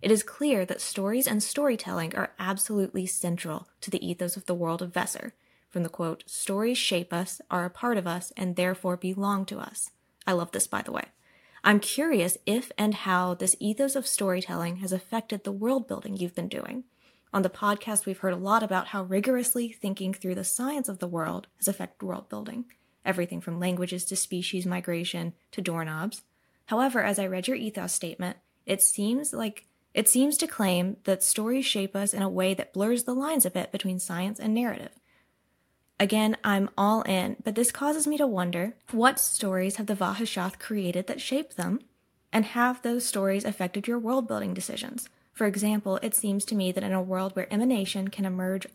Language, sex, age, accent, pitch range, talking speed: English, female, 20-39, American, 185-230 Hz, 195 wpm